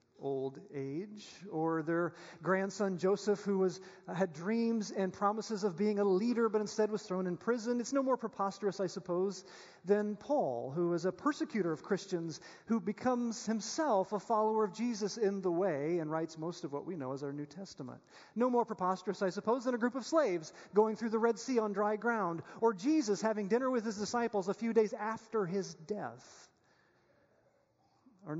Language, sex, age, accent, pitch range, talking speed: English, male, 40-59, American, 170-225 Hz, 190 wpm